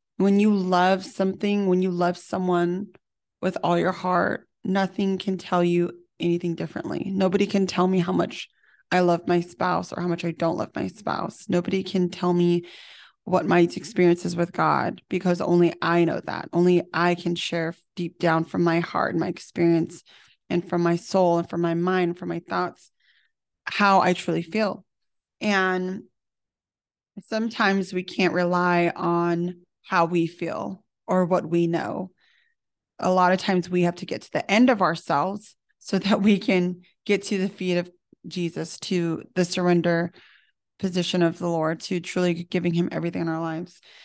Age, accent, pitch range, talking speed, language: 20-39, American, 170-190 Hz, 175 wpm, English